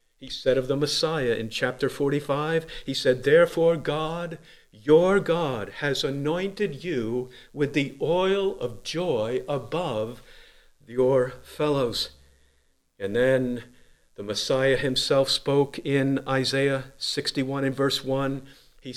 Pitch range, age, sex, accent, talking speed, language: 125-165 Hz, 50-69, male, American, 120 wpm, English